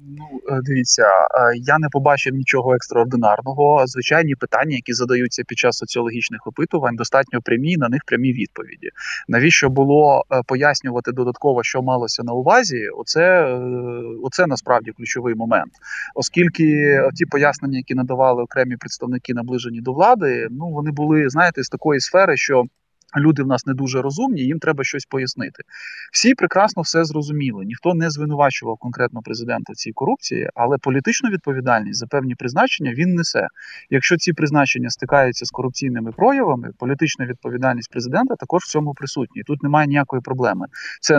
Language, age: Ukrainian, 20-39